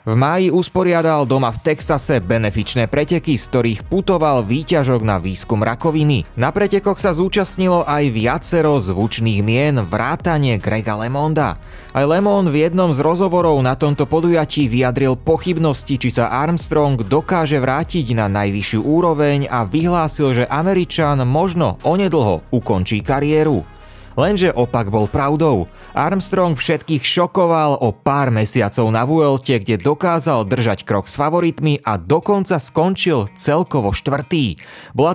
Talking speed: 130 wpm